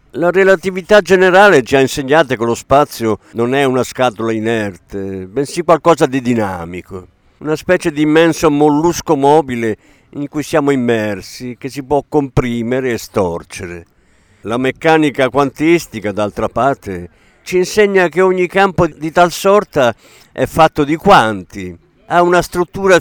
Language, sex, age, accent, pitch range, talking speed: Italian, male, 50-69, native, 110-170 Hz, 140 wpm